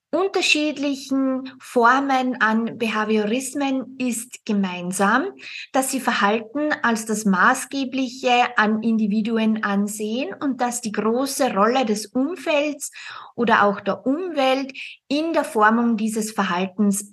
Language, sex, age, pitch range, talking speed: German, female, 20-39, 210-260 Hz, 110 wpm